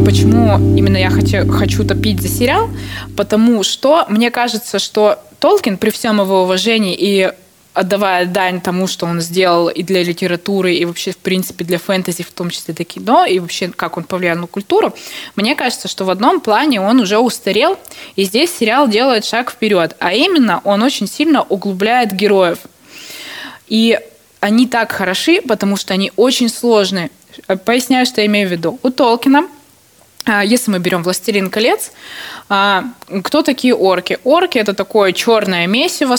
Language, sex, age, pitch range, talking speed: Russian, female, 20-39, 180-235 Hz, 160 wpm